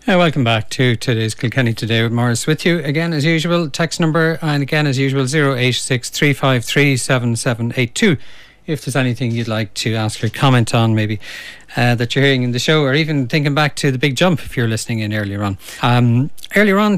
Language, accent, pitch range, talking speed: English, Irish, 115-135 Hz, 200 wpm